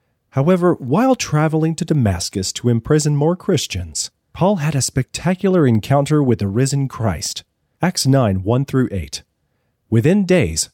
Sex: male